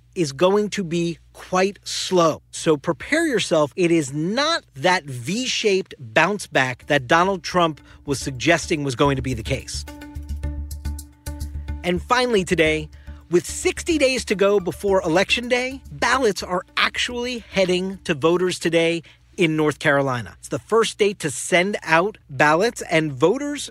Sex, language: male, English